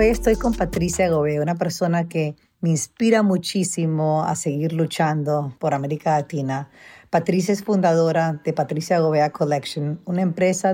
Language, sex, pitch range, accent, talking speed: English, female, 155-180 Hz, American, 145 wpm